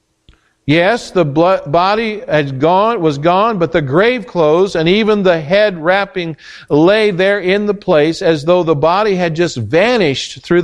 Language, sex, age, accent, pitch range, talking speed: English, male, 50-69, American, 135-185 Hz, 165 wpm